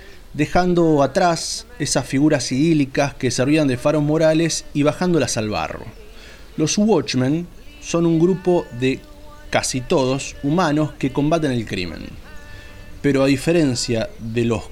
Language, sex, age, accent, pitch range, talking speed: Spanish, male, 30-49, Argentinian, 120-155 Hz, 130 wpm